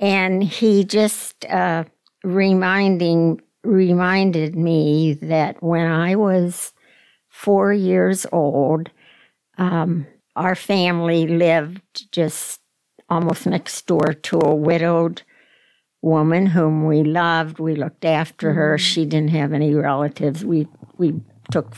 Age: 60-79